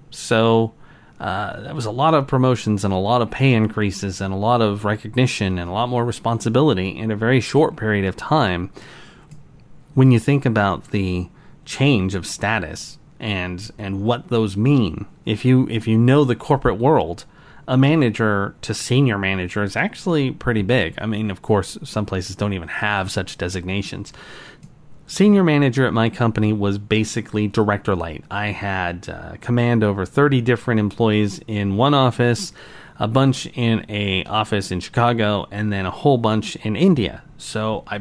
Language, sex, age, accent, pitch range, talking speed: English, male, 30-49, American, 100-130 Hz, 170 wpm